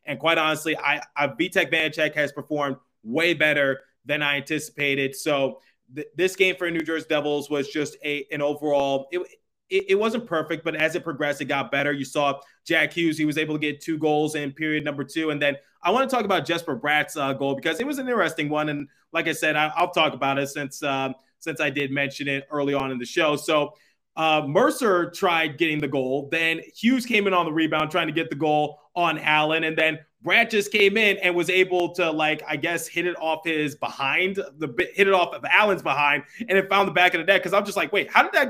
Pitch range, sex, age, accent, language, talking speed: 150-190 Hz, male, 20-39, American, English, 240 wpm